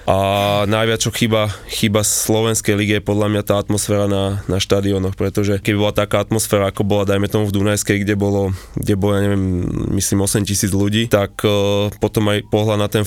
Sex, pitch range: male, 100-110 Hz